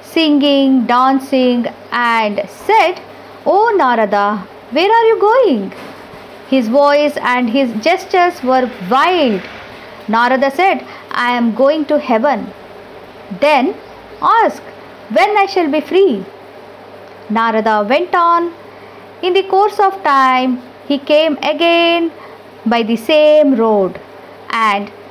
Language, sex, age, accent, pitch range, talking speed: English, female, 50-69, Indian, 220-330 Hz, 110 wpm